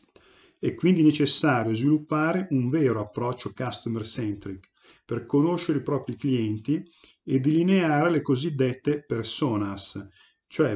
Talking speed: 110 wpm